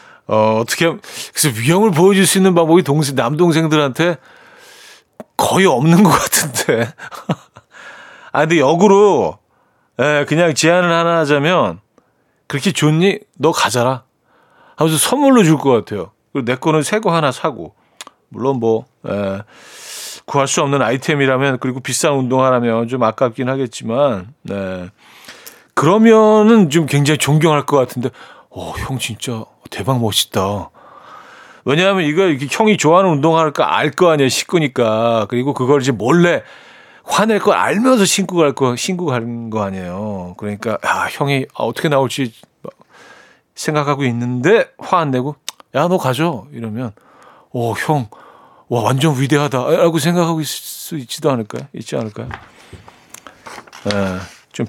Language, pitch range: Korean, 120-165 Hz